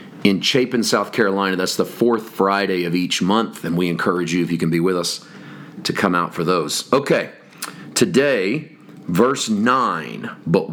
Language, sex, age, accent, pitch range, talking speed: English, male, 40-59, American, 100-130 Hz, 175 wpm